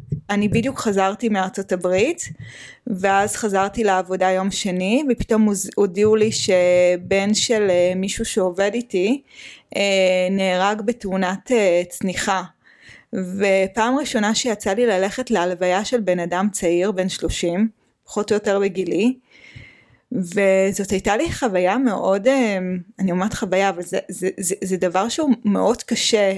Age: 20-39